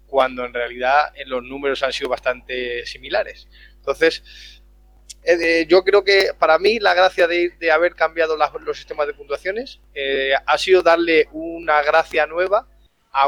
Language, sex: Spanish, male